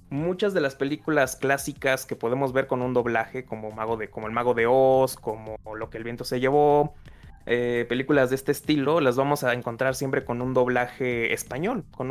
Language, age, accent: Spanish, 20-39, Mexican